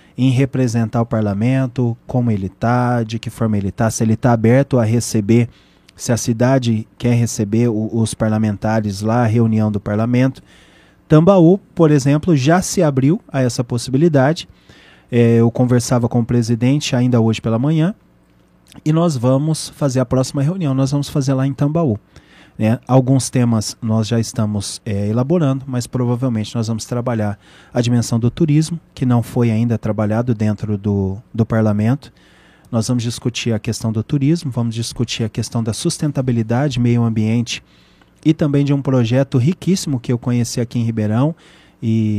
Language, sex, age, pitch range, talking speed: Portuguese, male, 20-39, 115-135 Hz, 160 wpm